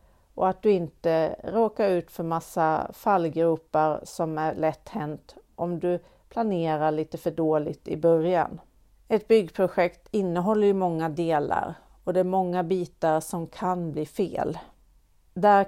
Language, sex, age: Swedish, female, 40-59